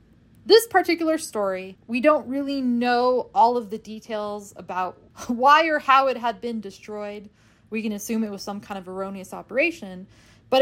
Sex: female